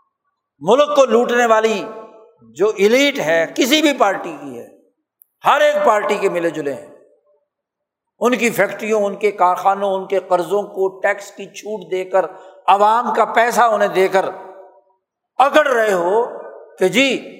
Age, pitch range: 60-79, 200-285 Hz